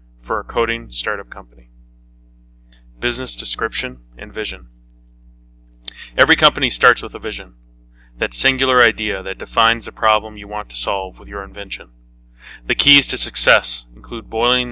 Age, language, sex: 20-39, English, male